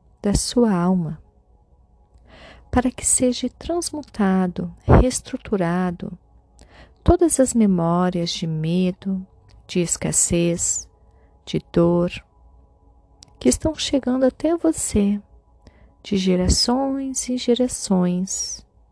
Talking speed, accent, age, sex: 80 wpm, Brazilian, 40-59, female